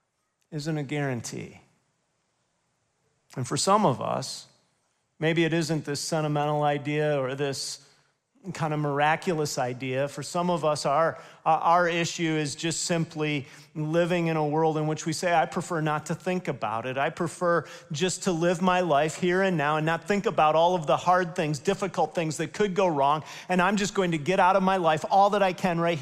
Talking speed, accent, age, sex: 195 wpm, American, 40-59, male